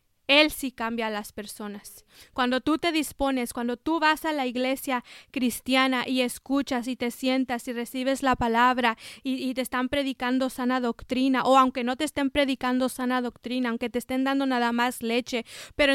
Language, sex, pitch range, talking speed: English, female, 255-280 Hz, 185 wpm